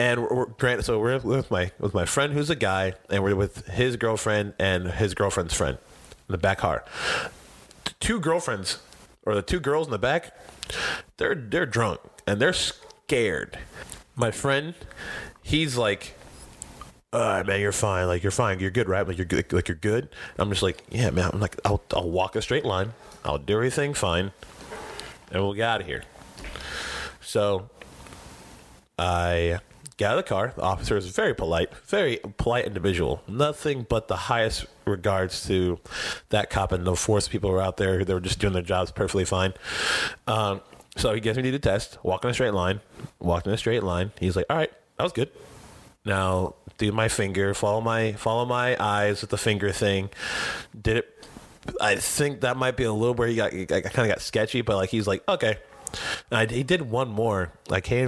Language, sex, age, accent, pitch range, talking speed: English, male, 30-49, American, 95-115 Hz, 195 wpm